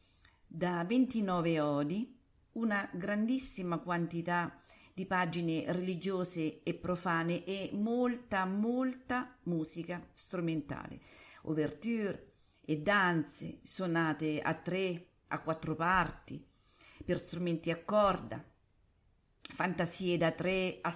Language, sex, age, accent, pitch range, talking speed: Italian, female, 50-69, native, 155-195 Hz, 95 wpm